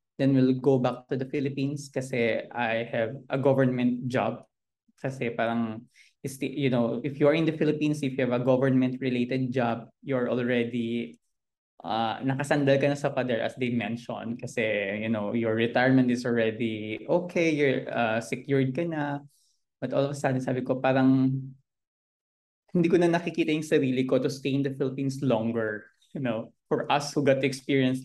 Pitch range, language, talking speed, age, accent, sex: 120-140 Hz, Filipino, 175 wpm, 20-39, native, male